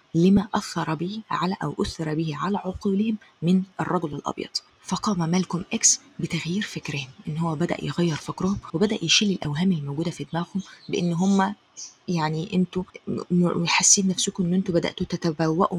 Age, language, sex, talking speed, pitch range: 20-39, Arabic, female, 145 wpm, 165-200 Hz